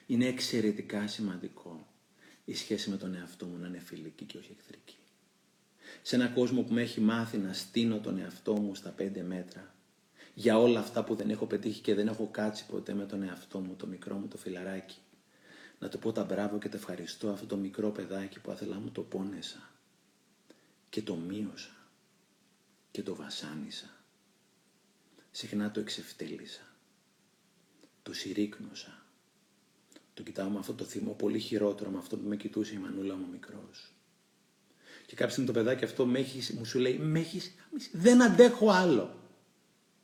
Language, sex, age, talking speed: Greek, male, 40-59, 160 wpm